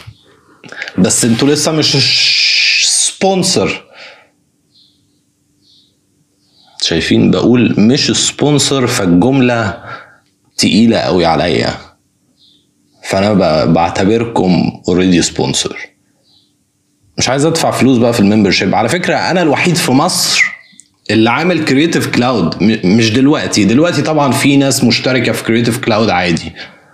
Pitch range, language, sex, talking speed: 105-140 Hz, Arabic, male, 100 wpm